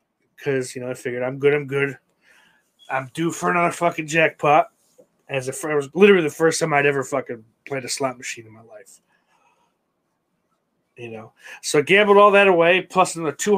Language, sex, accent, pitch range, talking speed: English, male, American, 135-200 Hz, 195 wpm